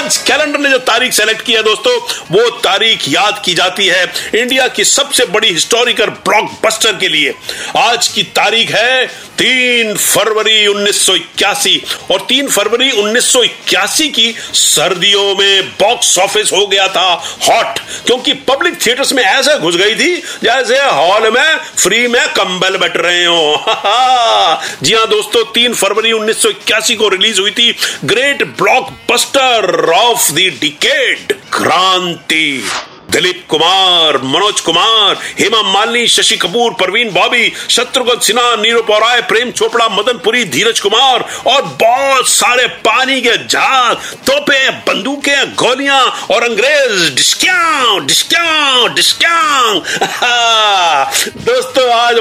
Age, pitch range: 50-69, 205-305 Hz